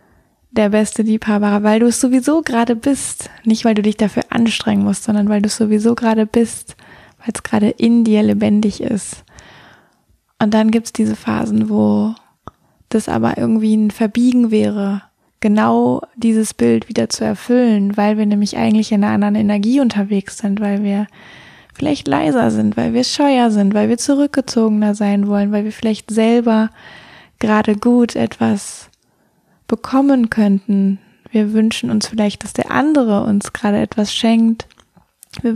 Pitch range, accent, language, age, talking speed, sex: 205-235 Hz, German, German, 20-39, 160 wpm, female